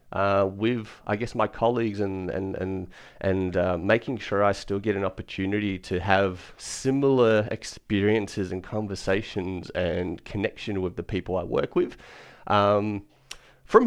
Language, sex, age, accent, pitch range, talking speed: English, male, 30-49, Australian, 100-125 Hz, 145 wpm